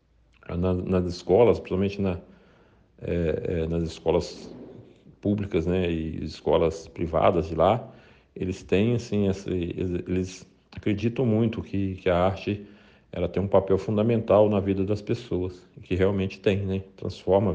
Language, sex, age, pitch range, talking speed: Arabic, male, 50-69, 85-100 Hz, 135 wpm